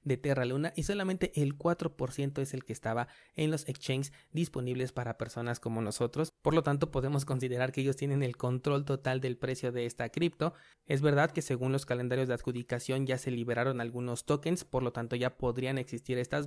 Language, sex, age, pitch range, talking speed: Spanish, male, 30-49, 125-150 Hz, 200 wpm